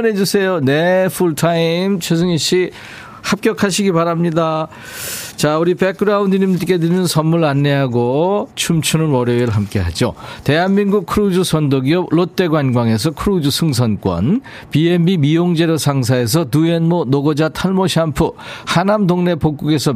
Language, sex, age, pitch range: Korean, male, 40-59, 135-185 Hz